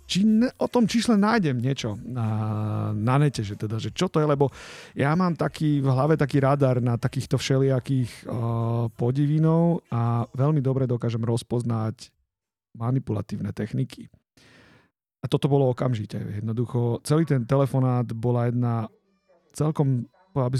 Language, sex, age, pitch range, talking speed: Slovak, male, 40-59, 115-135 Hz, 140 wpm